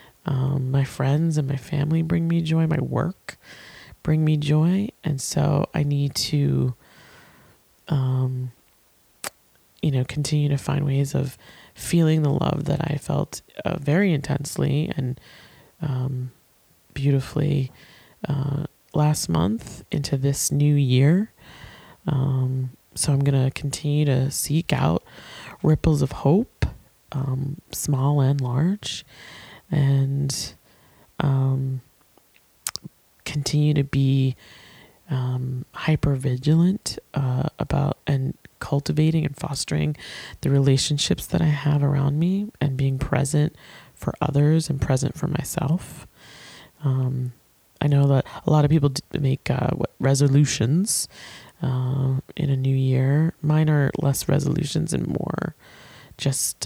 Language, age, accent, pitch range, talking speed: English, 20-39, American, 135-155 Hz, 125 wpm